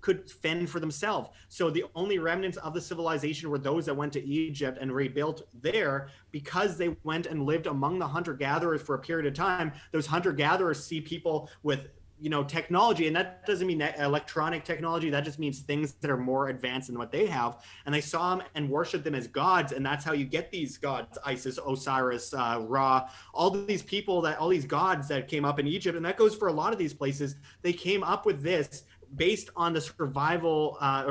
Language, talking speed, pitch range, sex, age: English, 215 wpm, 140-170 Hz, male, 30-49